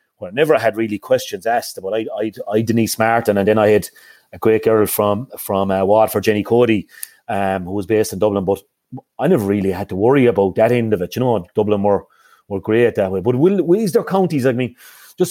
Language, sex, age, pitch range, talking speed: English, male, 30-49, 110-135 Hz, 235 wpm